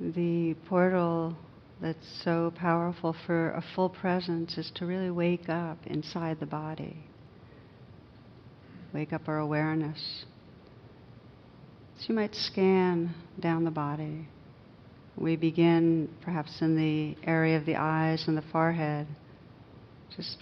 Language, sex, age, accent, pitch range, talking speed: English, female, 60-79, American, 145-170 Hz, 120 wpm